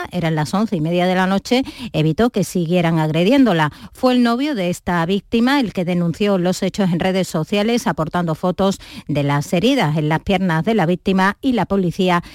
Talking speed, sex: 195 wpm, female